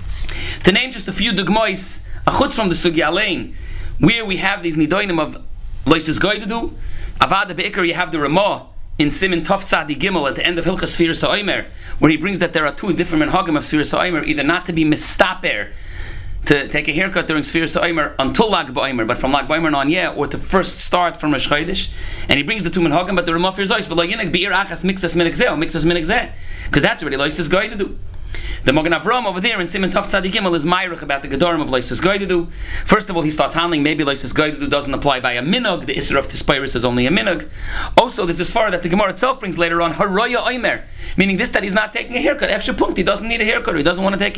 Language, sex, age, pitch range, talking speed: English, male, 30-49, 145-185 Hz, 220 wpm